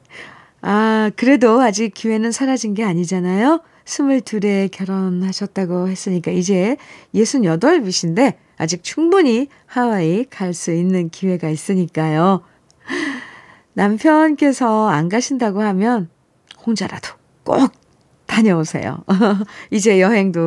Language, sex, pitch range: Korean, female, 180-260 Hz